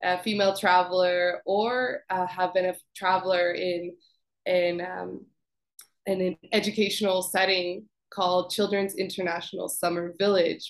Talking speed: 120 wpm